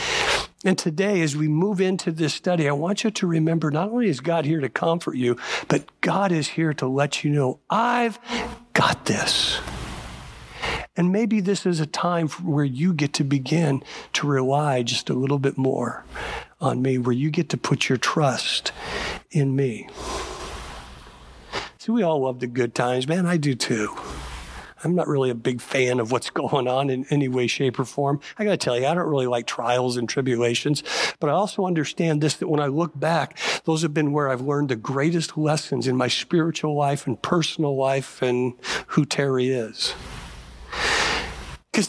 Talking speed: 190 wpm